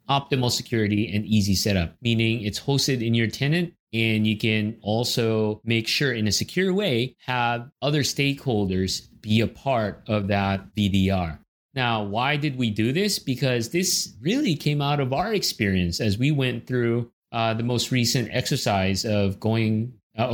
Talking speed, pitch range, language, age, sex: 160 wpm, 105-130 Hz, English, 30-49, male